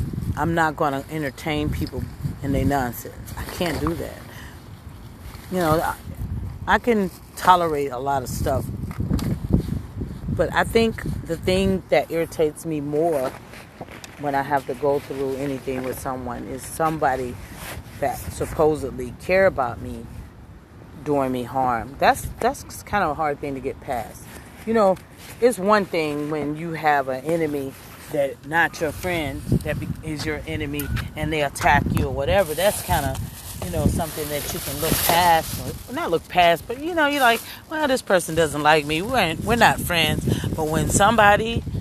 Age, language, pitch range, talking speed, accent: 40-59, English, 130-170 Hz, 170 wpm, American